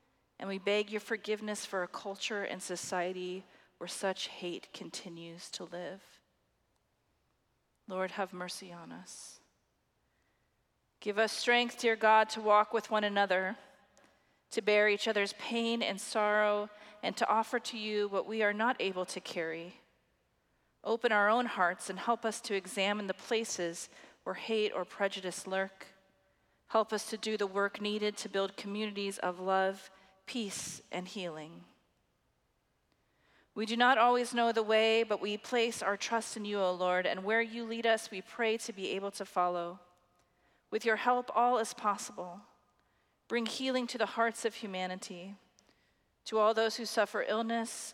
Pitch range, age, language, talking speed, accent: 185-225 Hz, 40-59, English, 160 wpm, American